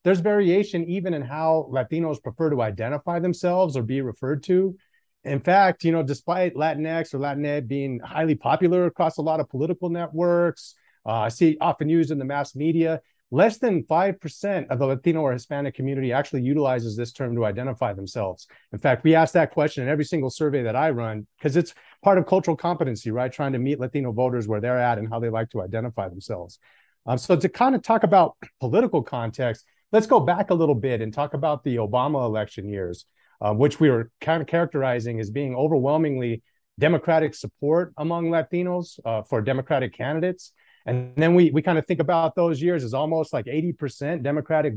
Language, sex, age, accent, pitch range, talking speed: English, male, 30-49, American, 130-170 Hz, 195 wpm